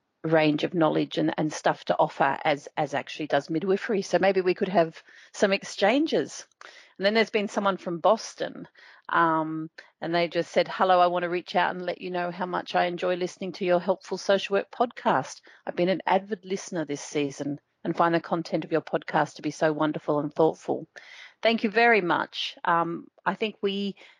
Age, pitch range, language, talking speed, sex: 40-59, 160-195 Hz, English, 200 wpm, female